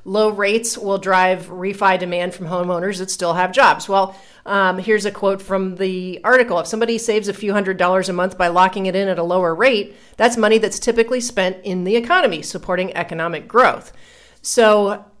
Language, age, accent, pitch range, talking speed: English, 40-59, American, 180-225 Hz, 195 wpm